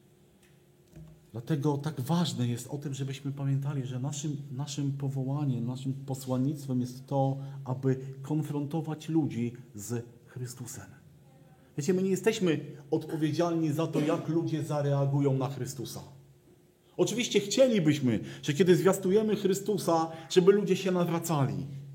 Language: Polish